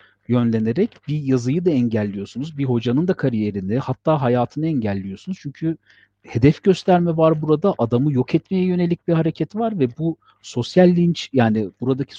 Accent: native